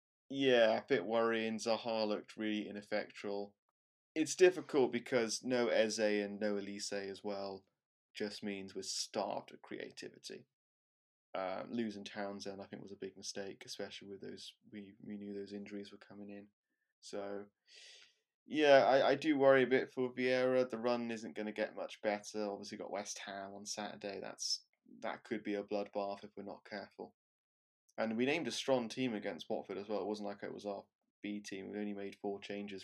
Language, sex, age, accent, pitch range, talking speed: English, male, 20-39, British, 100-115 Hz, 185 wpm